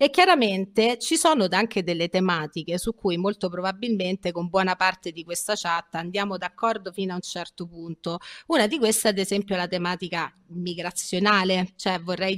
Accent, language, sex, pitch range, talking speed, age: native, Italian, female, 185-225 Hz, 165 wpm, 30-49